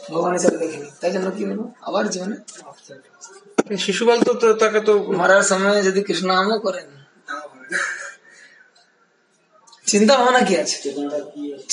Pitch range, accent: 185-240 Hz, Indian